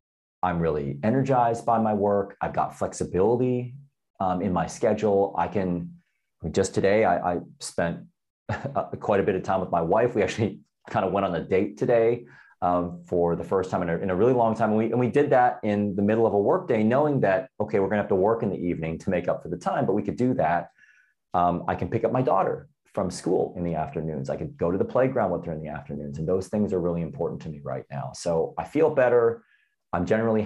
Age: 30-49